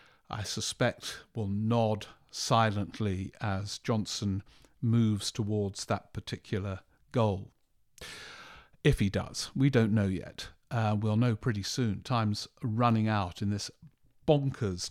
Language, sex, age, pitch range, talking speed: English, male, 50-69, 100-120 Hz, 120 wpm